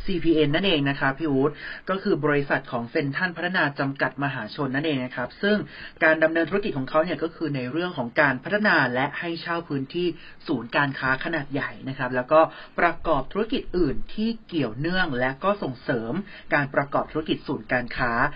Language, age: Thai, 30-49